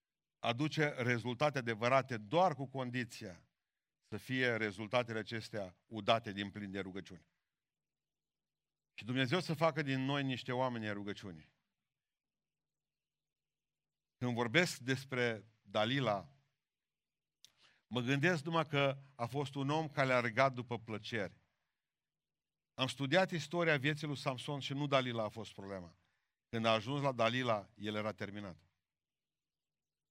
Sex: male